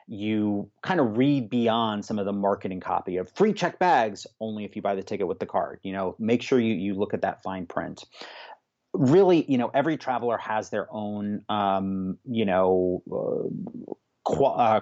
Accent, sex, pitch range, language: American, male, 100-115 Hz, English